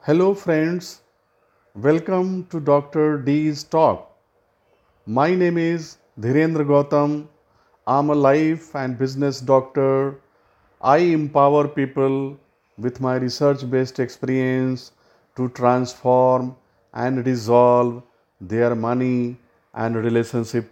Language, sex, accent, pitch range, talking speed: English, male, Indian, 120-160 Hz, 100 wpm